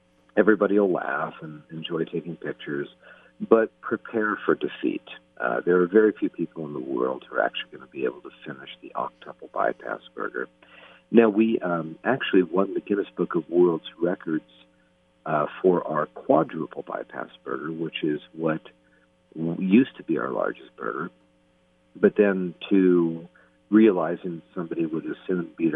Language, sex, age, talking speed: English, male, 50-69, 160 wpm